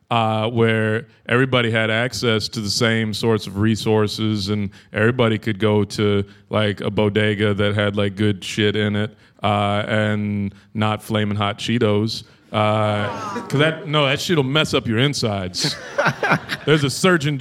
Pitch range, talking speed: 110-180 Hz, 160 wpm